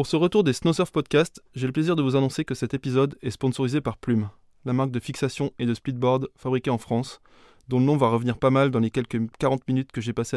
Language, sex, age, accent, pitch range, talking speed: French, male, 20-39, French, 125-145 Hz, 255 wpm